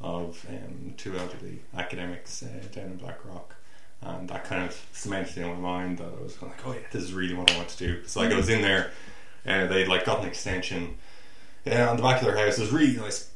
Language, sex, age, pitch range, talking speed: English, male, 20-39, 90-100 Hz, 260 wpm